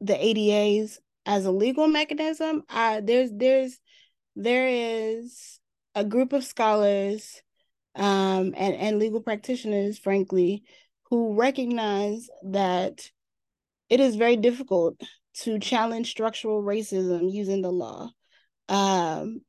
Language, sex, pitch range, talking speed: English, female, 195-235 Hz, 110 wpm